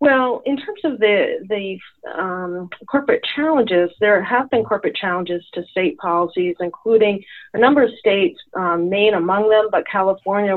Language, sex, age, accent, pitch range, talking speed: English, female, 40-59, American, 170-215 Hz, 160 wpm